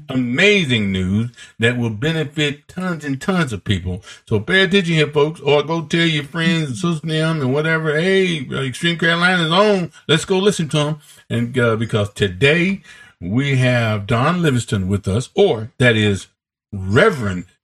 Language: English